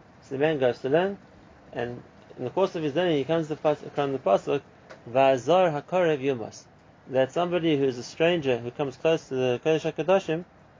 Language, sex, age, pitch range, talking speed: English, male, 30-49, 125-160 Hz, 170 wpm